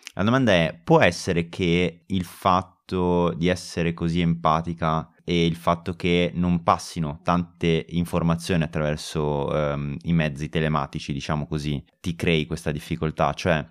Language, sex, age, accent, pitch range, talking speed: Italian, male, 20-39, native, 80-90 Hz, 140 wpm